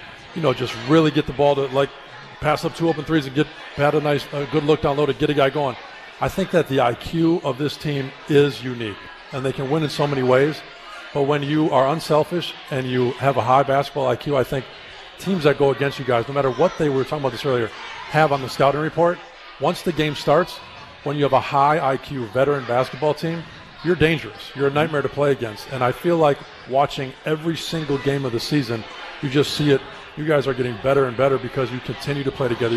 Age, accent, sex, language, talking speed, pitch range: 40-59, American, male, English, 240 wpm, 130-150 Hz